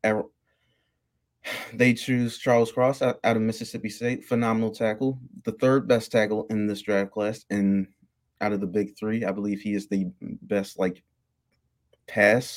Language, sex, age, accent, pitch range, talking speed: English, male, 20-39, American, 95-115 Hz, 155 wpm